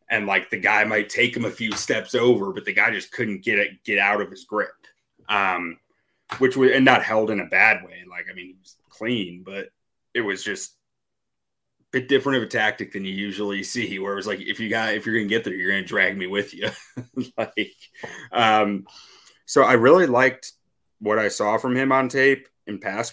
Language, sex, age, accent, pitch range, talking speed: English, male, 30-49, American, 95-120 Hz, 225 wpm